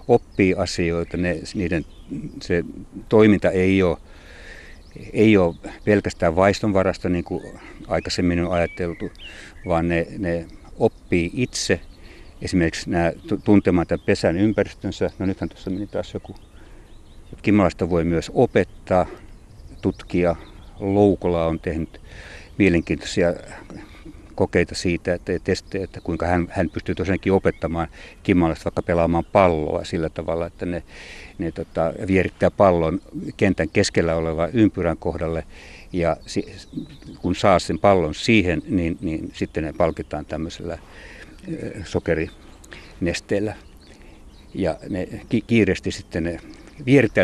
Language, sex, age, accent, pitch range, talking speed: Finnish, male, 60-79, native, 80-100 Hz, 115 wpm